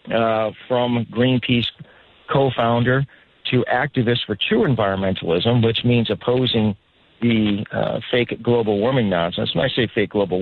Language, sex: English, male